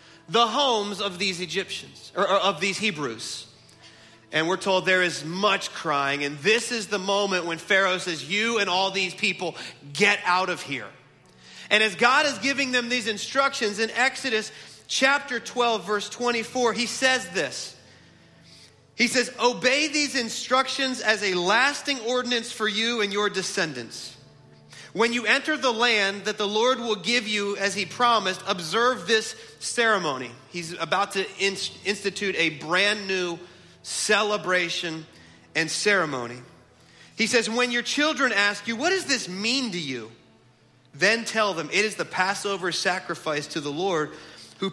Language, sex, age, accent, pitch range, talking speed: English, male, 30-49, American, 175-230 Hz, 155 wpm